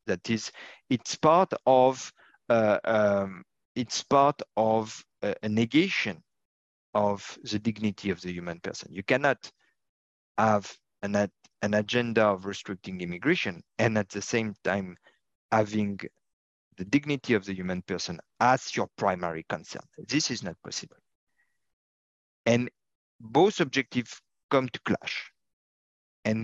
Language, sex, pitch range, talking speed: English, male, 100-125 Hz, 130 wpm